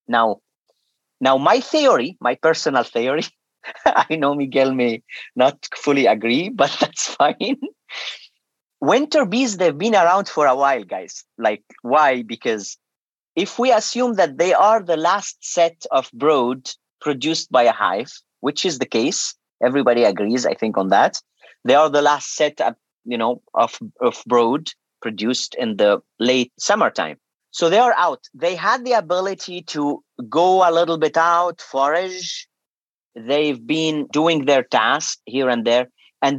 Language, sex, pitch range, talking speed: English, male, 135-180 Hz, 155 wpm